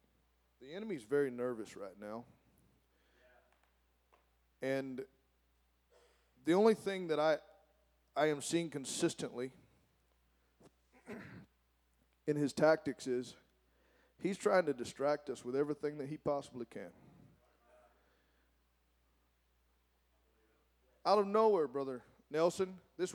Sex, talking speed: male, 95 wpm